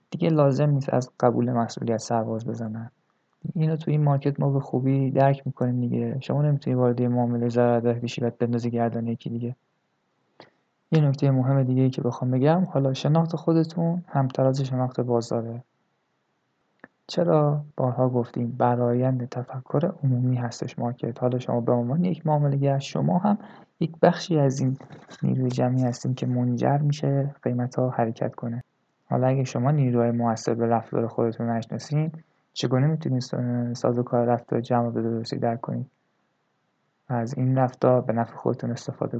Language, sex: Persian, male